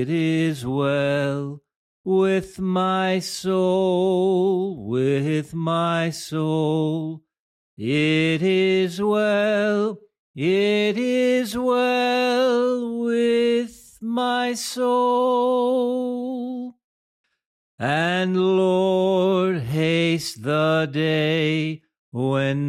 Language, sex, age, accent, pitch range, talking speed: English, male, 50-69, American, 170-245 Hz, 60 wpm